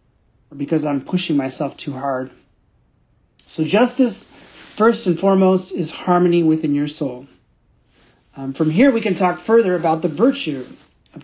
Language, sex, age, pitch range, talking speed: English, male, 40-59, 155-190 Hz, 150 wpm